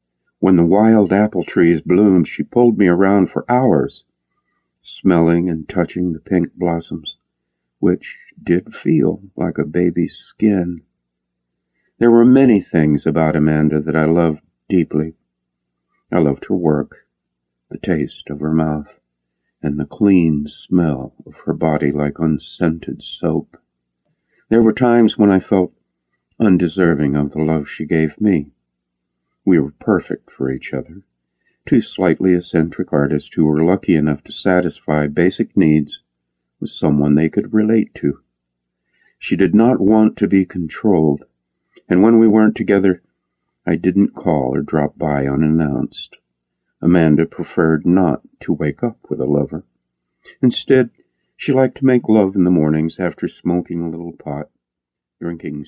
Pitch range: 70-90 Hz